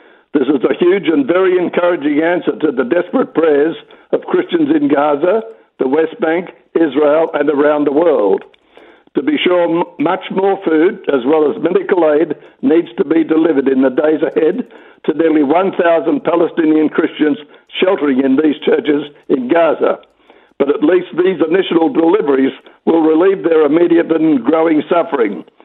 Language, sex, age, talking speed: English, male, 60-79, 155 wpm